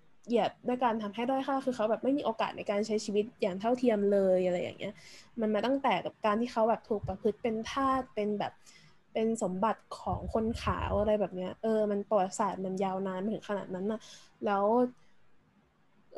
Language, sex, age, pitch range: Thai, female, 20-39, 195-245 Hz